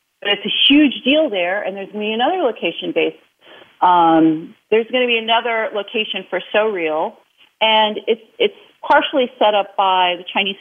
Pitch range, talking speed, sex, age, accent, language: 185-245 Hz, 185 wpm, female, 40-59, American, English